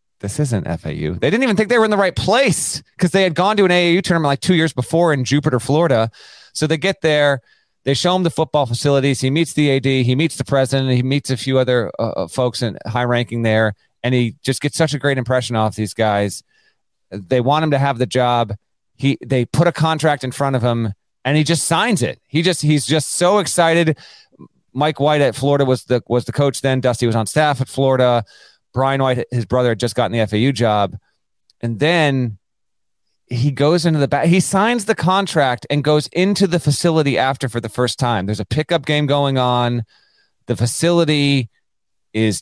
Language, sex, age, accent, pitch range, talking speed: English, male, 30-49, American, 120-160 Hz, 215 wpm